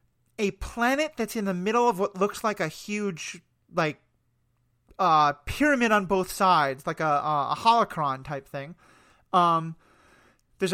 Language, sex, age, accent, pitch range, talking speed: English, male, 30-49, American, 160-220 Hz, 150 wpm